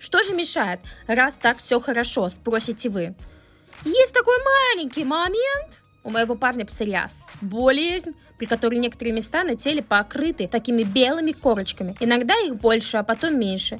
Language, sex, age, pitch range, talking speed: Russian, female, 20-39, 230-310 Hz, 150 wpm